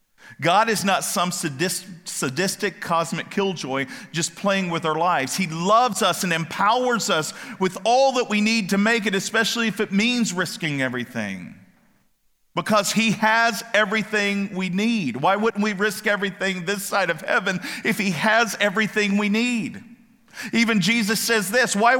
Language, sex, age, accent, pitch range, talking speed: English, male, 50-69, American, 205-275 Hz, 160 wpm